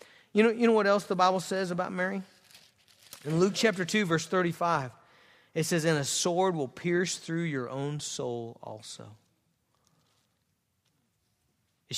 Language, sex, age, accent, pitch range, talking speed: English, male, 40-59, American, 165-230 Hz, 145 wpm